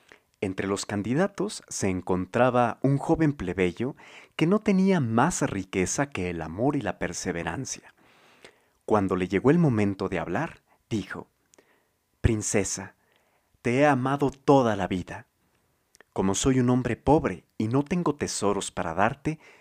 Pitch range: 95-140 Hz